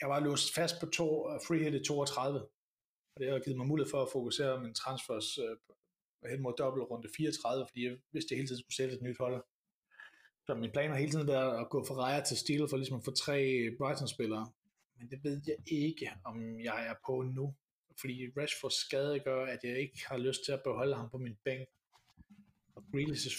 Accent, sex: native, male